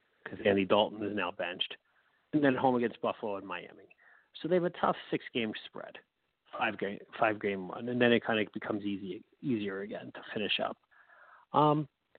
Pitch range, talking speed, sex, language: 105-135 Hz, 190 wpm, male, English